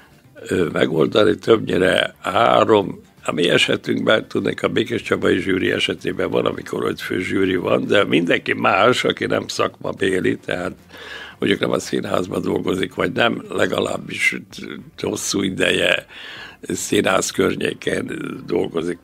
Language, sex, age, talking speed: Hungarian, male, 60-79, 120 wpm